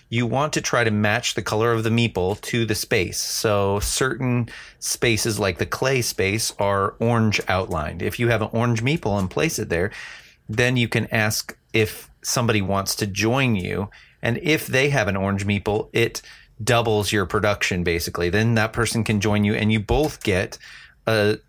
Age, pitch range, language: 30-49, 100-120 Hz, English